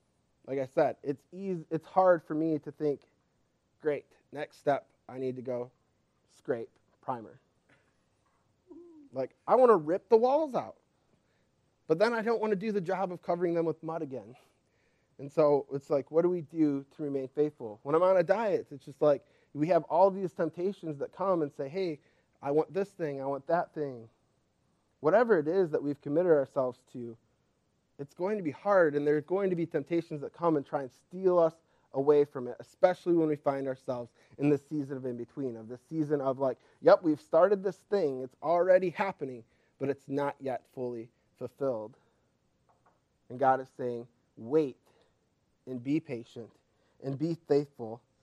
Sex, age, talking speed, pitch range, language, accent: male, 20-39, 185 wpm, 135-170 Hz, English, American